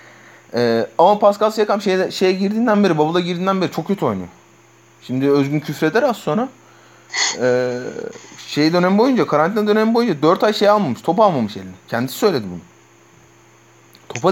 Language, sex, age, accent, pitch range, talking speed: Turkish, male, 30-49, native, 125-195 Hz, 155 wpm